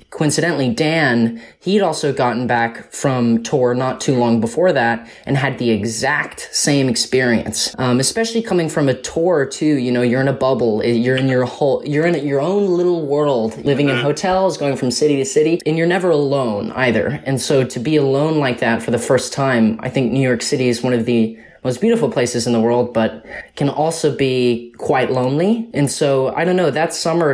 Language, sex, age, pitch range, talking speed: English, male, 20-39, 125-150 Hz, 205 wpm